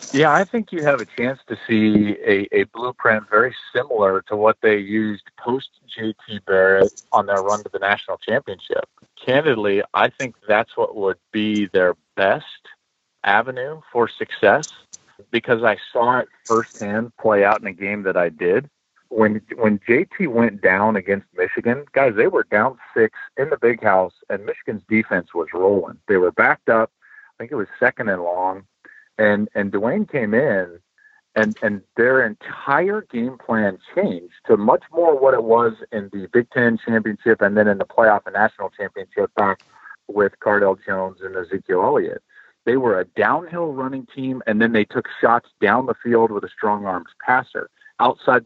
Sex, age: male, 40-59